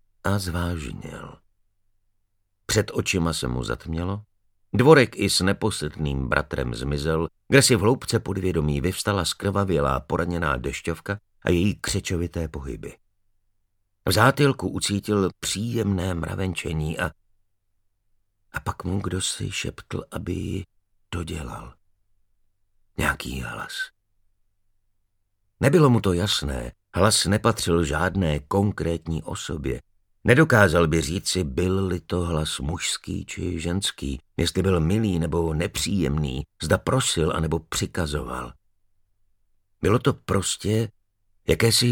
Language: Slovak